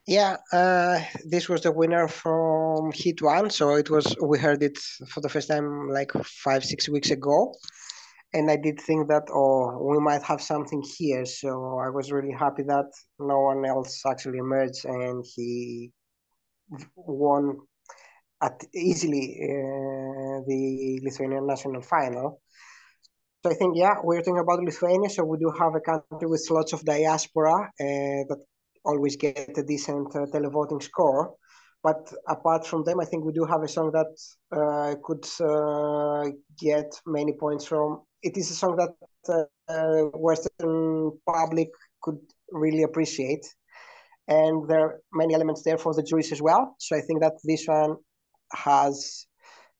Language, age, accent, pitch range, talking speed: English, 20-39, Spanish, 145-160 Hz, 160 wpm